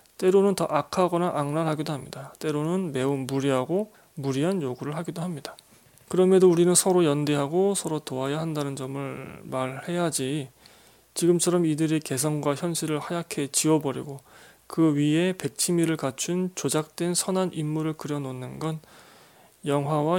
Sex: male